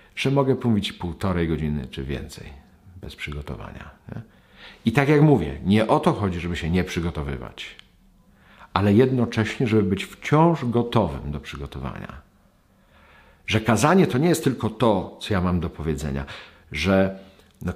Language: Polish